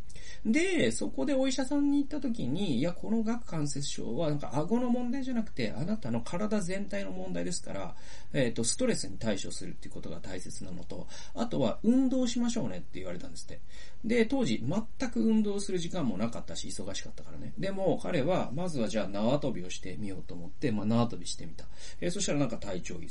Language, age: Japanese, 40-59